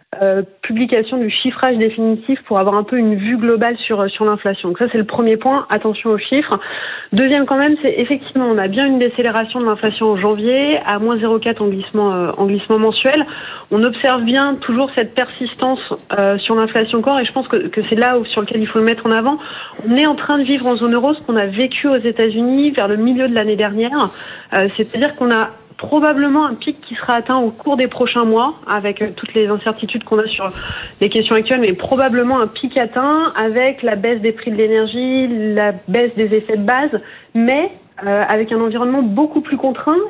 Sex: female